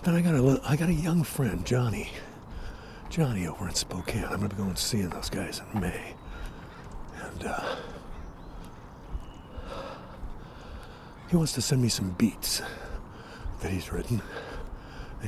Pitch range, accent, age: 90-120 Hz, American, 60-79